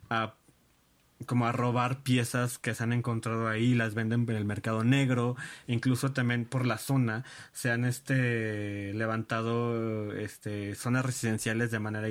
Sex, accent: male, Mexican